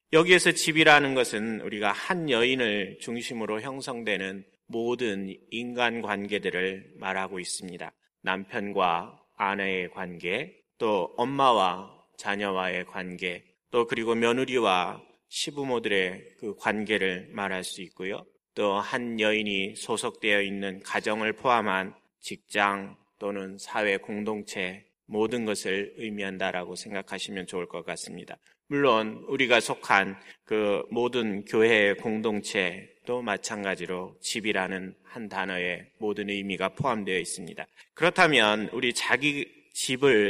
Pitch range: 95-125 Hz